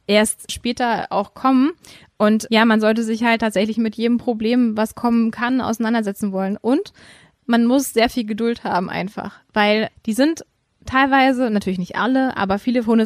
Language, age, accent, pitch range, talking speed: German, 20-39, German, 210-245 Hz, 170 wpm